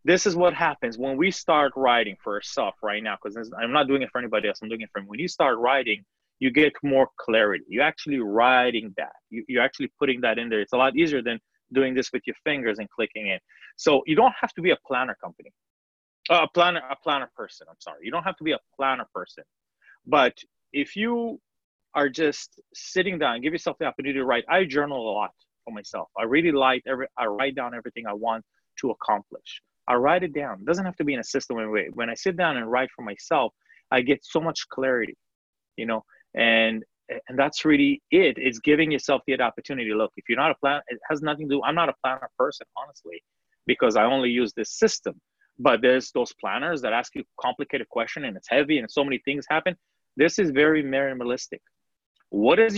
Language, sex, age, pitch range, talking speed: English, male, 30-49, 125-170 Hz, 225 wpm